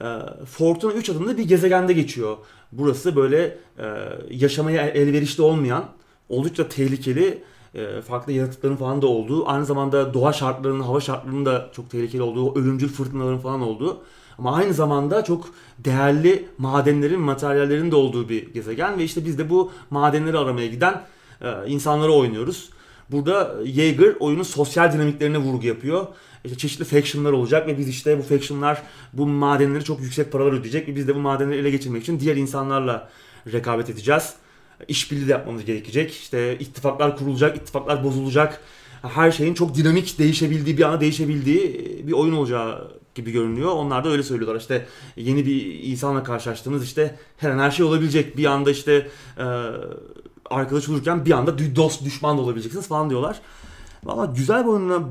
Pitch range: 130-155 Hz